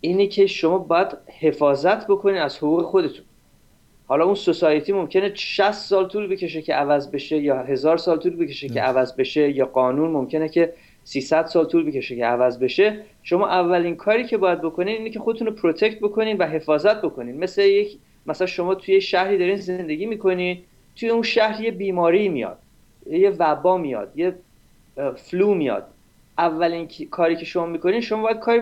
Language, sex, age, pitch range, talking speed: Persian, male, 30-49, 165-210 Hz, 170 wpm